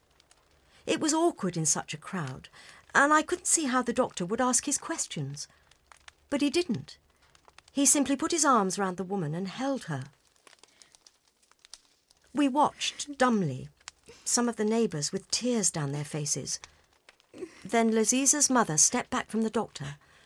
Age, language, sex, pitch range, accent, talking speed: 60-79, English, female, 175-275 Hz, British, 155 wpm